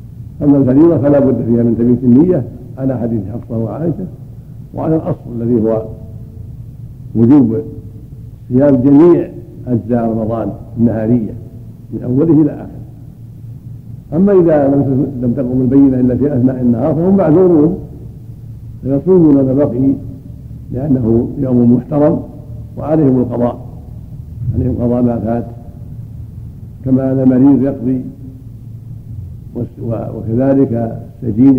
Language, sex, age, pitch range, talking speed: Arabic, male, 70-89, 115-135 Hz, 105 wpm